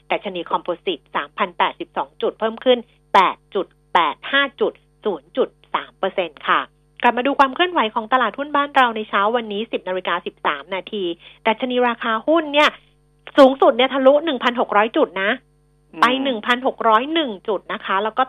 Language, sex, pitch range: Thai, female, 175-255 Hz